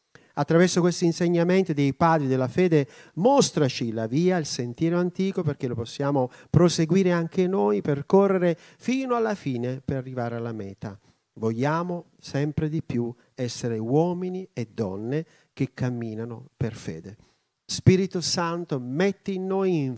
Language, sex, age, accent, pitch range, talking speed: Italian, male, 40-59, native, 125-180 Hz, 135 wpm